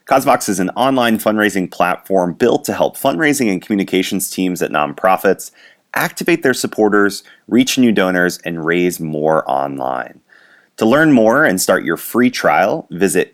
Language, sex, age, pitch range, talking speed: English, male, 30-49, 90-115 Hz, 155 wpm